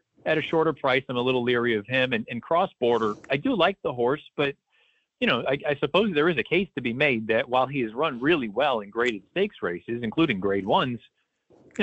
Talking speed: 240 wpm